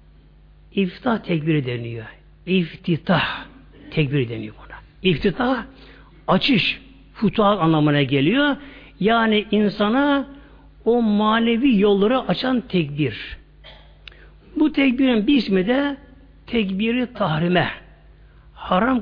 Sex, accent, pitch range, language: male, native, 155-235 Hz, Turkish